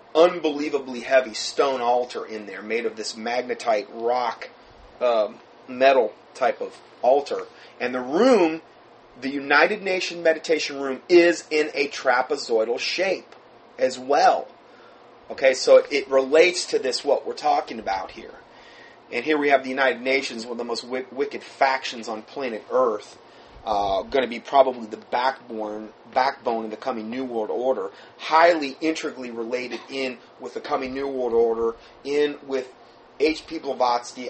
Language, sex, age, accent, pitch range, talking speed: English, male, 30-49, American, 120-160 Hz, 150 wpm